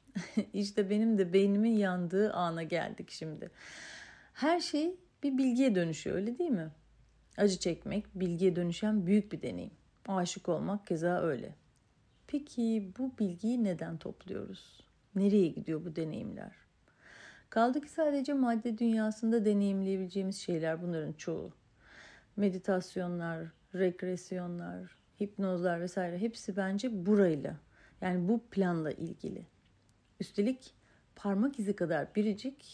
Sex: female